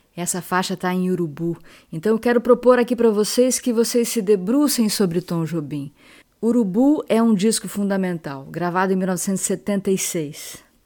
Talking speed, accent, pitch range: 150 wpm, Brazilian, 180-215 Hz